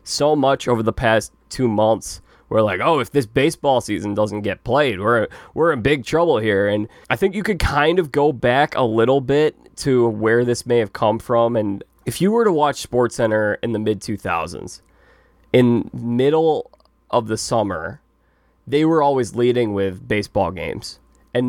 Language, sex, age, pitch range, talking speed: English, male, 20-39, 110-130 Hz, 180 wpm